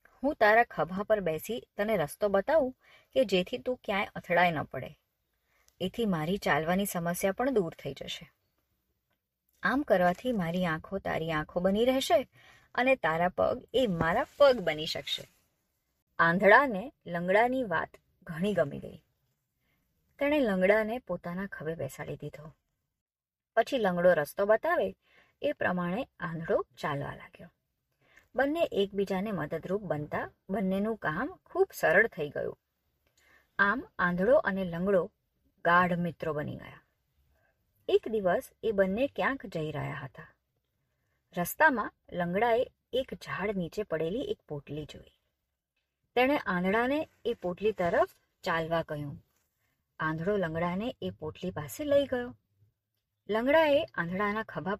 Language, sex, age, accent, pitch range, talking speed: Gujarati, male, 20-39, native, 160-235 Hz, 95 wpm